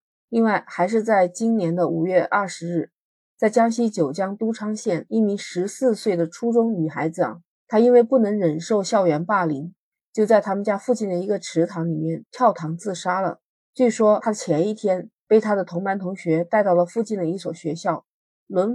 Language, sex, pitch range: Chinese, female, 170-220 Hz